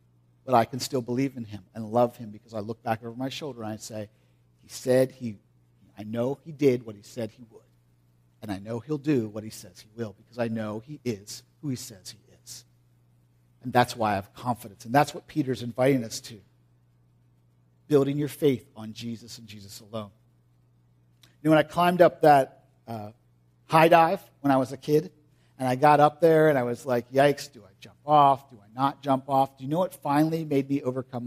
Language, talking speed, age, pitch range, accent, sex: English, 220 wpm, 50-69, 105-150 Hz, American, male